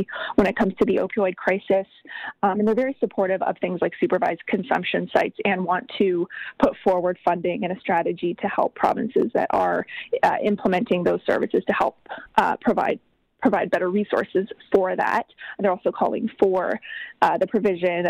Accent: American